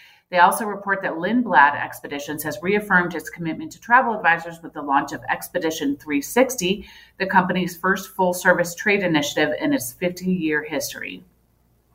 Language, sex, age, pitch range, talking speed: English, female, 30-49, 155-200 Hz, 145 wpm